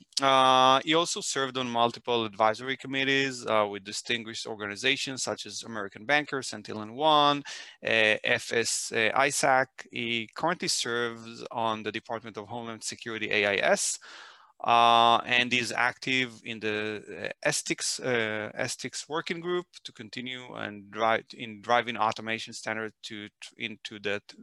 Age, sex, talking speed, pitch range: 30-49, male, 130 wpm, 115-135 Hz